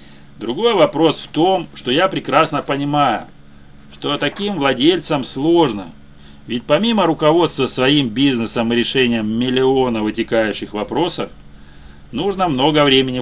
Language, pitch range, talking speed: Russian, 100-130 Hz, 115 wpm